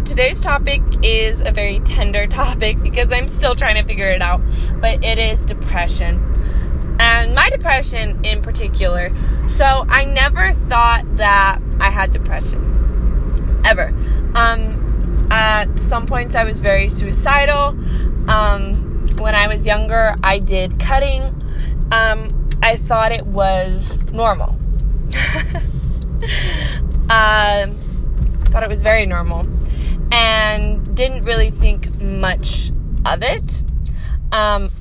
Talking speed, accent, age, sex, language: 120 wpm, American, 20-39, female, English